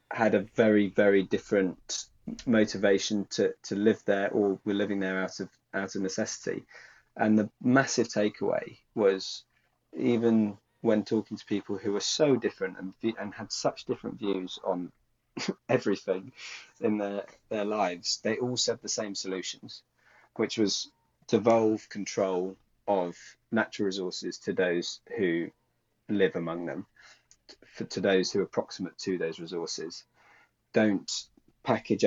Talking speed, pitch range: 140 wpm, 95-110 Hz